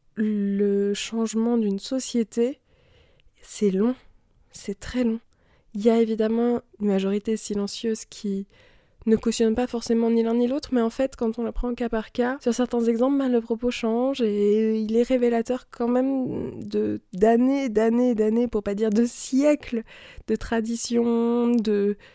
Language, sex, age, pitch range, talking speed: French, female, 20-39, 205-235 Hz, 165 wpm